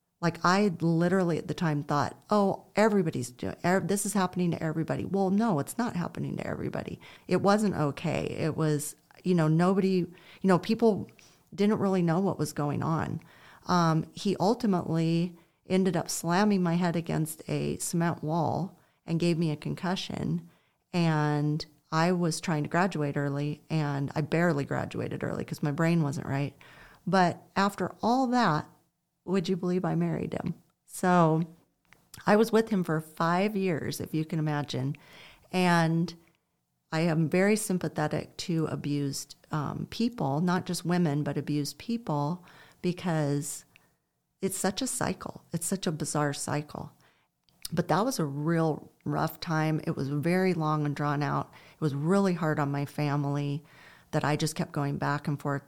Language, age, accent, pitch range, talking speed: English, 40-59, American, 150-180 Hz, 165 wpm